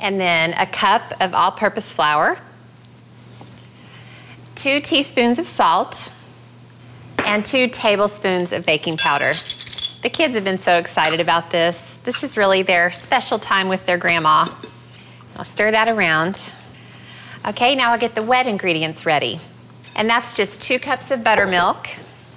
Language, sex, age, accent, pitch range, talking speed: English, female, 30-49, American, 170-230 Hz, 140 wpm